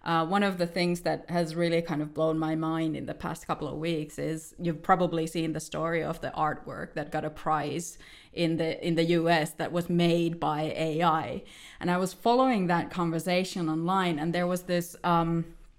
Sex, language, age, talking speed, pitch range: female, English, 20-39, 205 wpm, 165-185 Hz